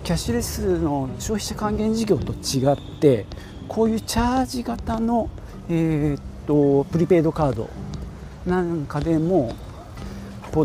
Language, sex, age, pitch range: Japanese, male, 40-59, 100-170 Hz